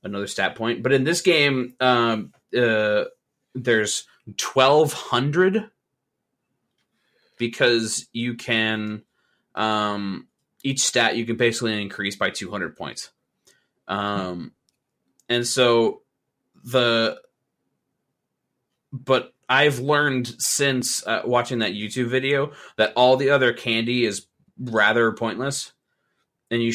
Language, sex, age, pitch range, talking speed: English, male, 20-39, 110-130 Hz, 105 wpm